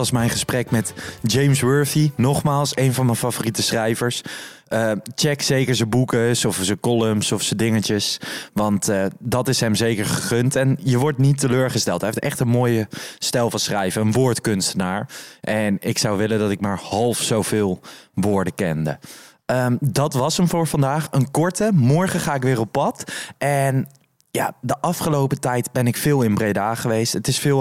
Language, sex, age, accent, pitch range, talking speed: Dutch, male, 20-39, Dutch, 110-140 Hz, 185 wpm